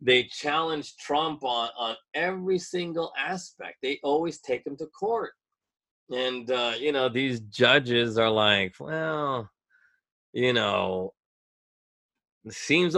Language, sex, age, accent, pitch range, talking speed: English, male, 30-49, American, 120-170 Hz, 125 wpm